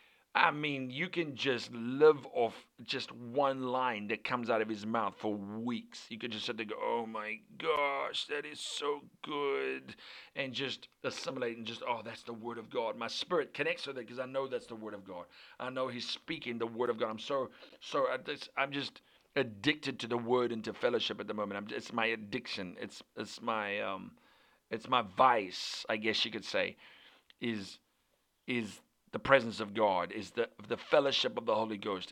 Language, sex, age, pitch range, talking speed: English, male, 40-59, 110-135 Hz, 200 wpm